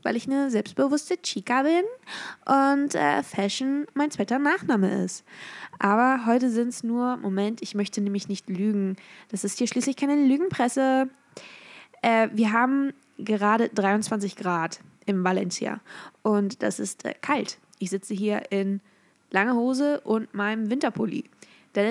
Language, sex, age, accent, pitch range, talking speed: German, female, 20-39, German, 200-260 Hz, 145 wpm